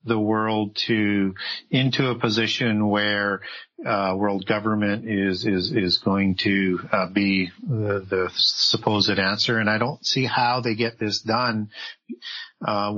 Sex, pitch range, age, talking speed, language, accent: male, 95-110 Hz, 40-59, 145 wpm, English, American